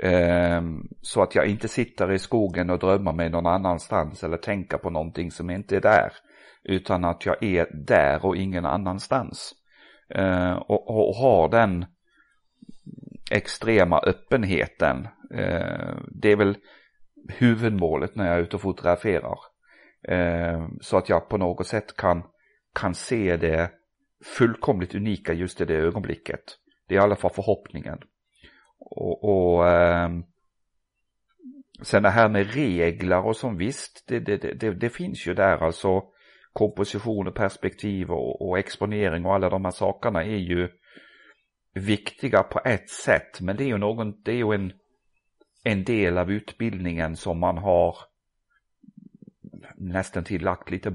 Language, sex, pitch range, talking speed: Swedish, male, 85-105 Hz, 140 wpm